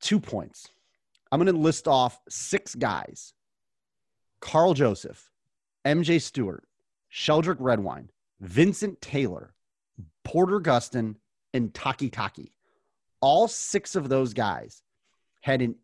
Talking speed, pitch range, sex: 110 wpm, 115-145 Hz, male